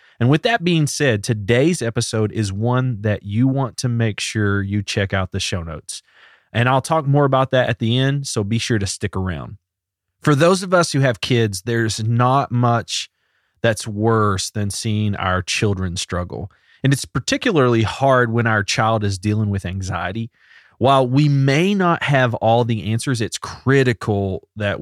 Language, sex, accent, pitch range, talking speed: English, male, American, 100-130 Hz, 180 wpm